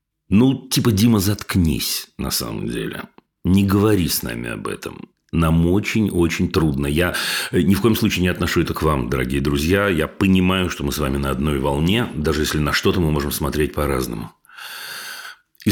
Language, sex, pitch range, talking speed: Russian, male, 75-110 Hz, 175 wpm